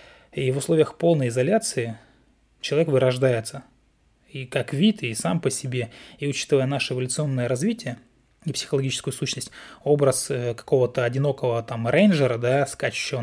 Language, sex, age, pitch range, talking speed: Russian, male, 20-39, 120-145 Hz, 120 wpm